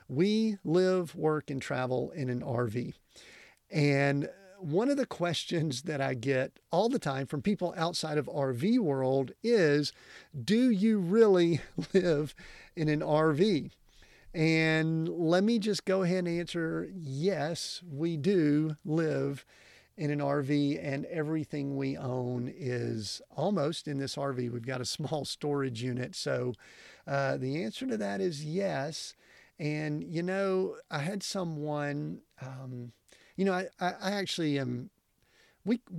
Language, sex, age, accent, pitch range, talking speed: English, male, 50-69, American, 130-170 Hz, 140 wpm